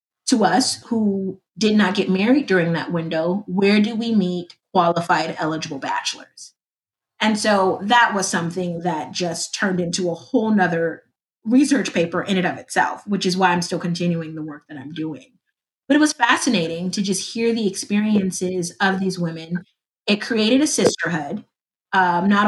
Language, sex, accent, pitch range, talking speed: English, female, American, 175-215 Hz, 170 wpm